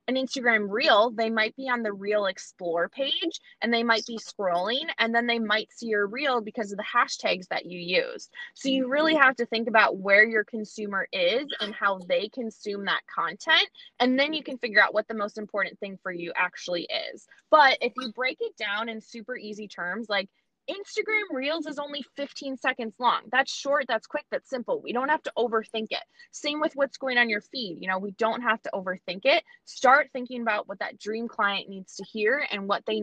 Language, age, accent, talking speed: English, 20-39, American, 220 wpm